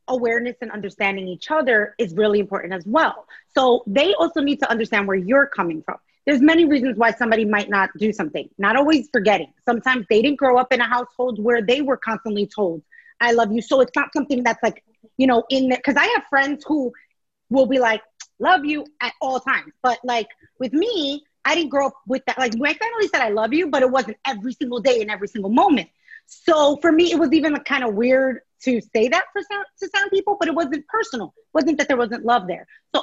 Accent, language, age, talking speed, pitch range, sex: American, English, 30-49, 230 wpm, 230-305 Hz, female